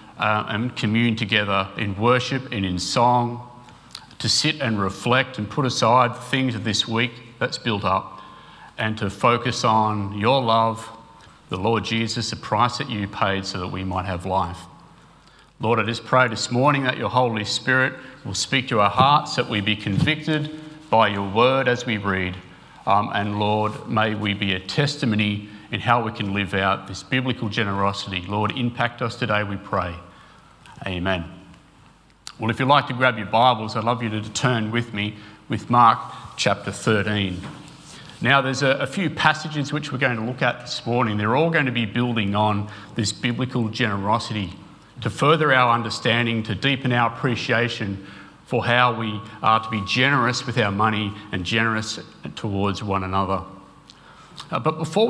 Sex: male